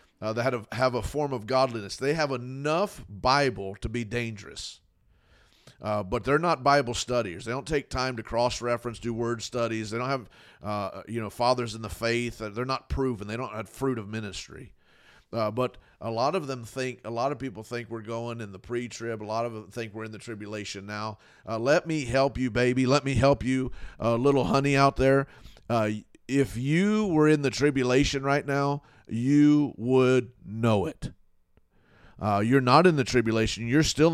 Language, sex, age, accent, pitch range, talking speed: English, male, 40-59, American, 115-140 Hz, 200 wpm